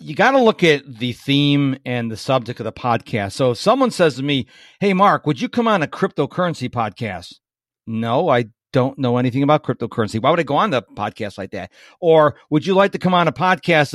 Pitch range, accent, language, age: 135-200 Hz, American, English, 50-69